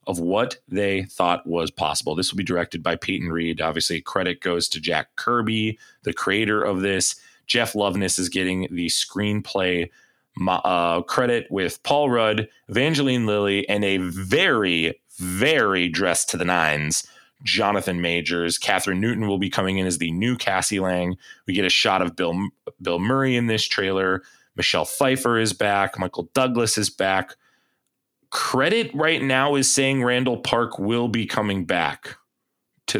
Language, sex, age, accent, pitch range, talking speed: English, male, 30-49, American, 90-120 Hz, 160 wpm